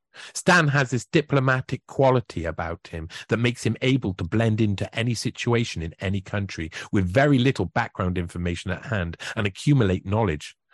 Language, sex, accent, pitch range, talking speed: English, male, British, 100-130 Hz, 160 wpm